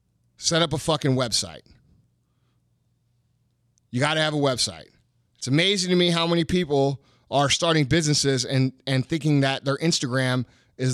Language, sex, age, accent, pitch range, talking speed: English, male, 30-49, American, 130-165 Hz, 155 wpm